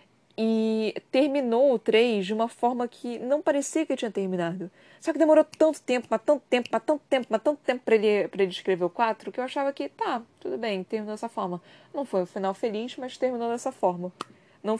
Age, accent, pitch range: 20-39, Brazilian, 175-270 Hz